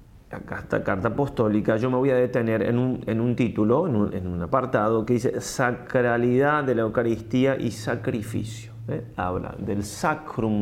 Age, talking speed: 30-49, 180 wpm